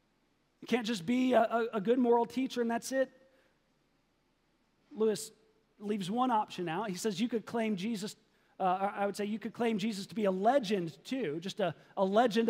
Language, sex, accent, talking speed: English, male, American, 185 wpm